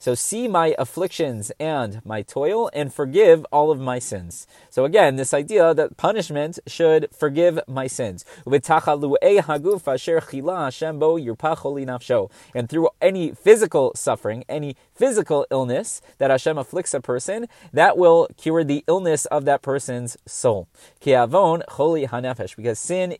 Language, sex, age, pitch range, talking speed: English, male, 30-49, 125-165 Hz, 120 wpm